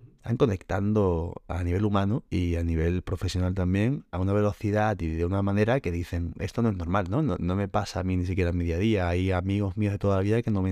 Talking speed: 265 wpm